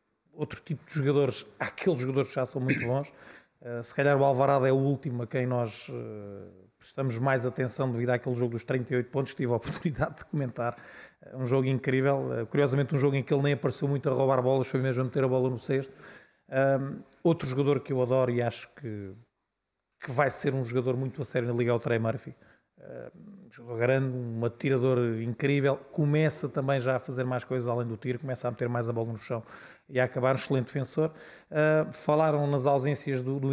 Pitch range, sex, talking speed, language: 125-150 Hz, male, 215 wpm, Portuguese